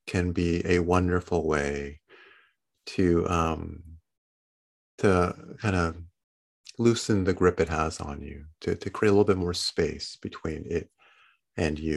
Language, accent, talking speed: English, American, 145 wpm